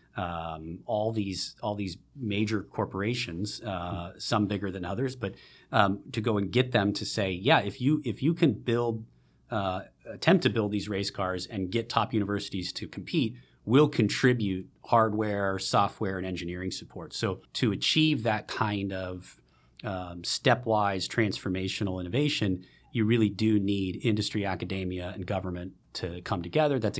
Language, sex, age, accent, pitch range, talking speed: English, male, 30-49, American, 95-115 Hz, 155 wpm